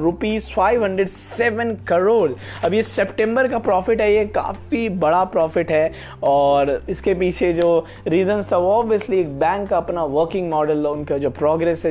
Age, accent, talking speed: 20-39, native, 55 wpm